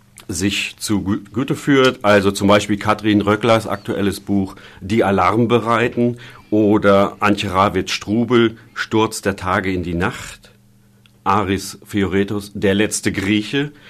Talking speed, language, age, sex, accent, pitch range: 120 wpm, German, 40-59, male, German, 100-110 Hz